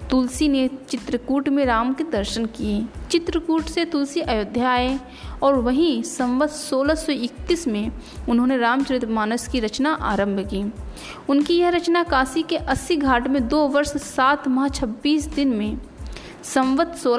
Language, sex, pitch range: Hindi, female, 230-295 Hz